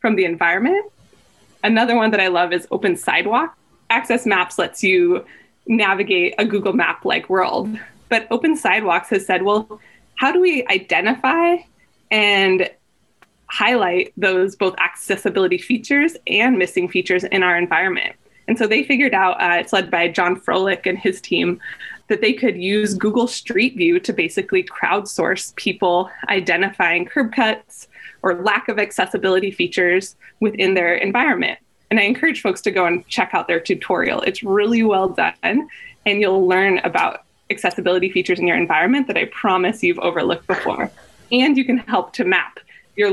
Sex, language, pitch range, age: female, English, 185-235 Hz, 20-39